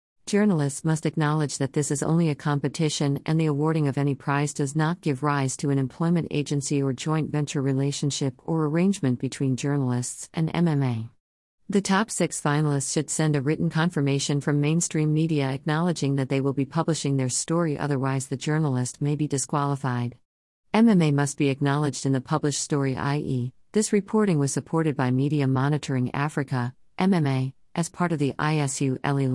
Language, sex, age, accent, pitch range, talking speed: English, female, 50-69, American, 135-160 Hz, 170 wpm